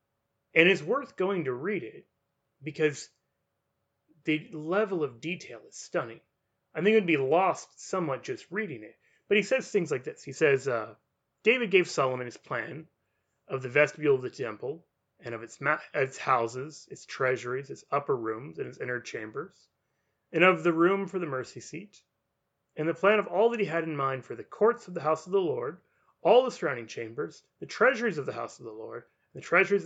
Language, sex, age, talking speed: English, male, 30-49, 200 wpm